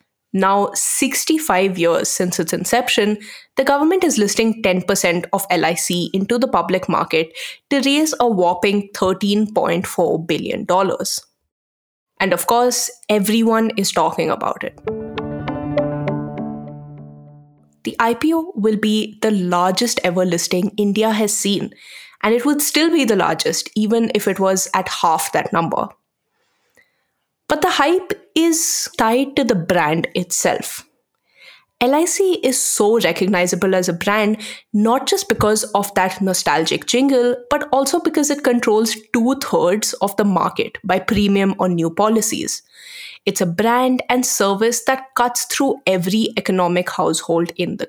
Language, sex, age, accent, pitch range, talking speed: English, female, 20-39, Indian, 185-250 Hz, 135 wpm